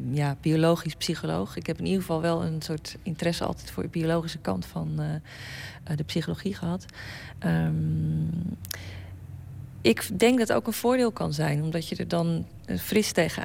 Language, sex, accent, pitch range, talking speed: Dutch, female, Dutch, 135-180 Hz, 170 wpm